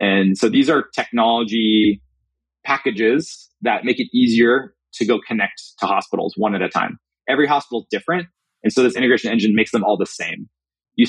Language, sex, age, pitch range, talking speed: English, male, 30-49, 95-125 Hz, 185 wpm